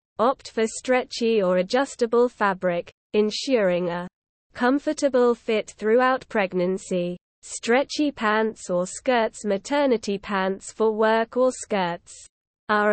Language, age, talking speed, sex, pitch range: English, 20-39, 105 wpm, female, 195-250 Hz